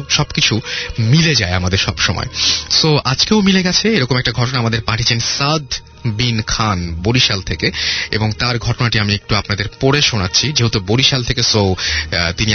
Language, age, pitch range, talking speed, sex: Bengali, 30-49, 105-135 Hz, 160 wpm, male